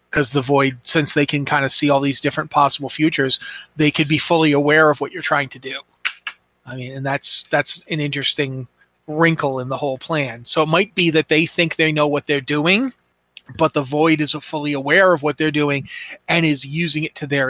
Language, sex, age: English, male, 30-49